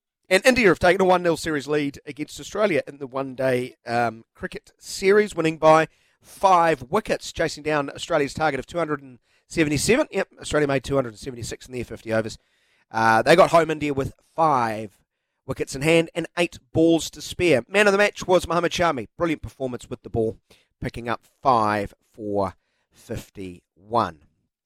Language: English